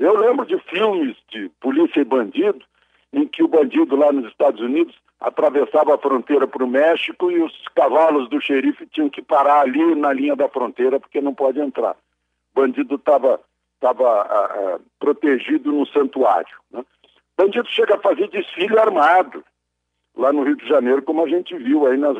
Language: Portuguese